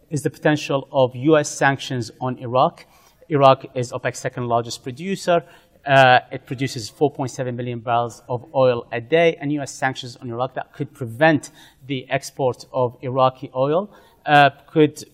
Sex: male